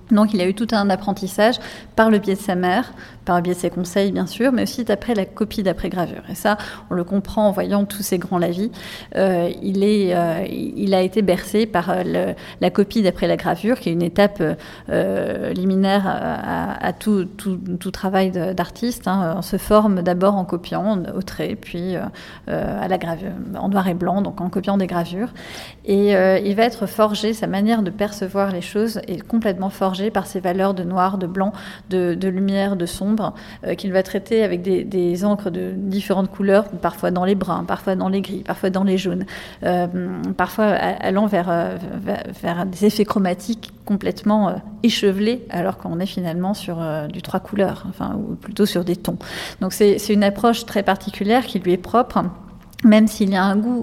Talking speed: 205 wpm